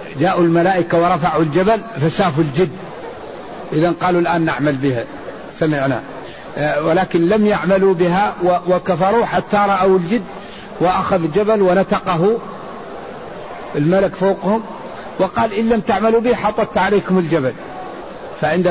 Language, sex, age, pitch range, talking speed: Arabic, male, 50-69, 170-205 Hz, 110 wpm